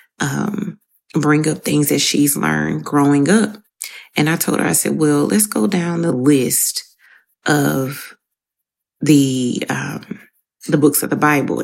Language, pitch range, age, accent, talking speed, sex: English, 135-160 Hz, 30-49, American, 150 wpm, female